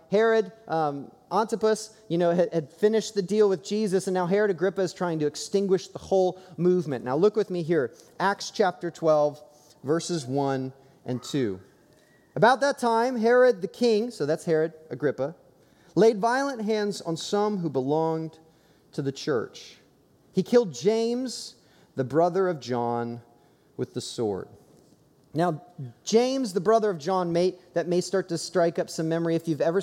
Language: English